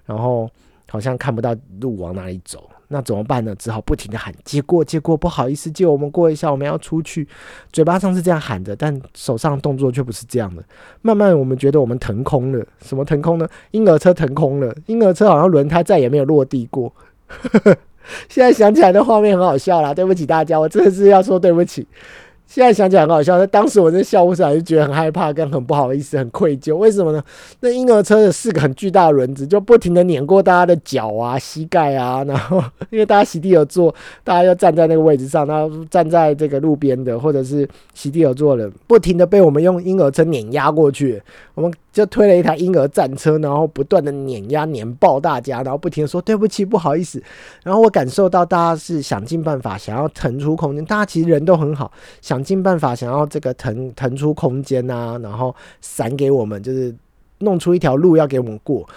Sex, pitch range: male, 135-180 Hz